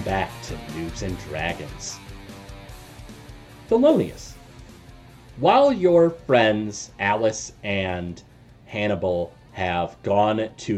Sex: male